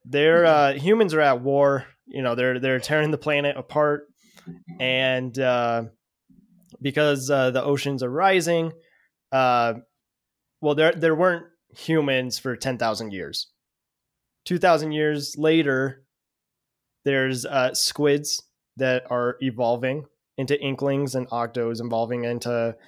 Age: 20-39